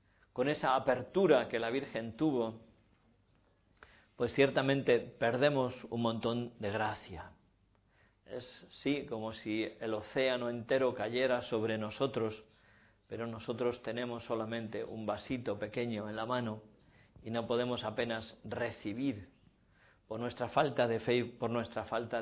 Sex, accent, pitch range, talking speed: male, Spanish, 110-130 Hz, 130 wpm